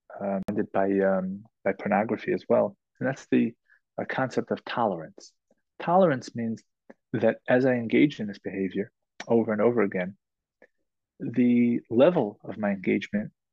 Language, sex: English, male